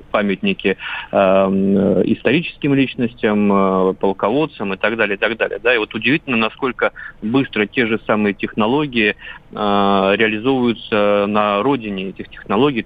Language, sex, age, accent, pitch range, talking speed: Russian, male, 30-49, native, 105-125 Hz, 130 wpm